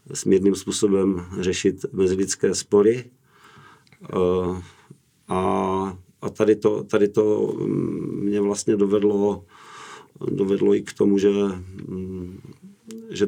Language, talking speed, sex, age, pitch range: Czech, 90 wpm, male, 50-69, 95-105 Hz